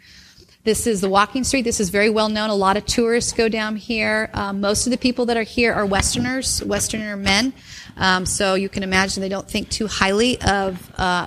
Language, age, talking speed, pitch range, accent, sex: English, 40-59, 220 wpm, 180-220 Hz, American, female